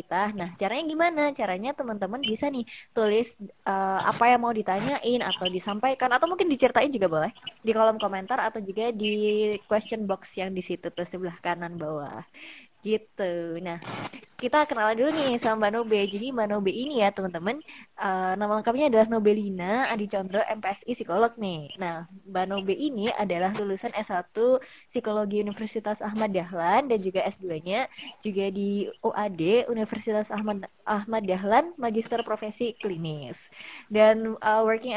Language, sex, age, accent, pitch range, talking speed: Indonesian, female, 20-39, native, 195-235 Hz, 140 wpm